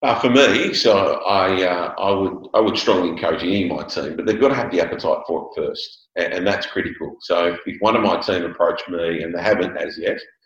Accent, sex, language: Australian, male, English